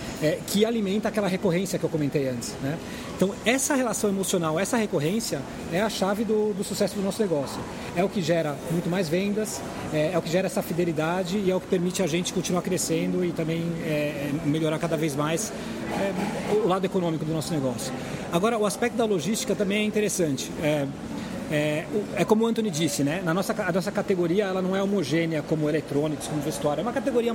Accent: Brazilian